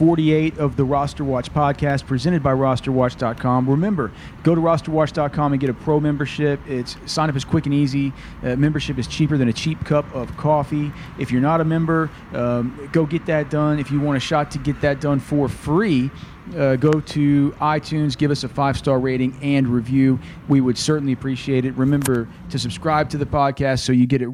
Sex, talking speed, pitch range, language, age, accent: male, 205 wpm, 125-150 Hz, English, 40-59, American